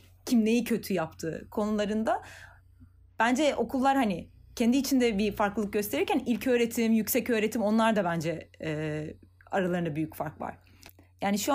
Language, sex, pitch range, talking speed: Turkish, female, 160-235 Hz, 135 wpm